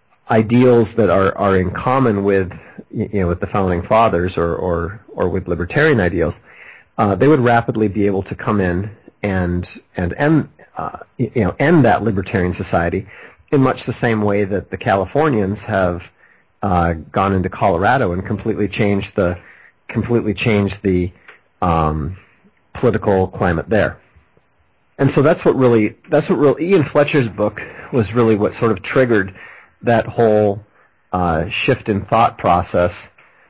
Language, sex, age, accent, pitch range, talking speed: English, male, 30-49, American, 95-110 Hz, 155 wpm